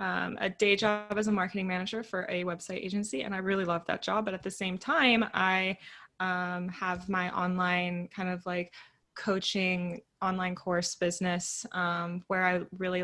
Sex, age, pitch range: female, 20-39, 180-195 Hz